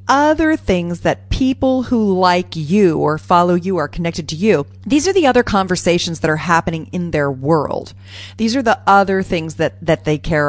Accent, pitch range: American, 135-190 Hz